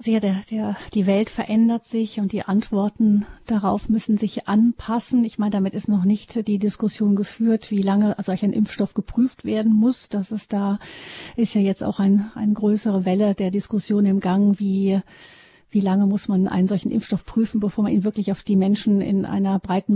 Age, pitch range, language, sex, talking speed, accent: 40-59, 200-220 Hz, German, female, 195 wpm, German